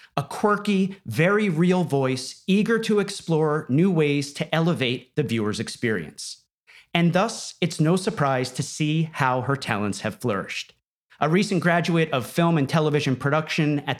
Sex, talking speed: male, 155 wpm